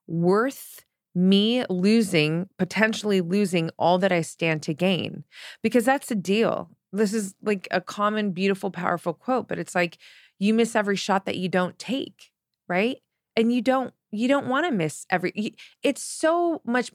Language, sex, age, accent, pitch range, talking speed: English, female, 20-39, American, 175-225 Hz, 165 wpm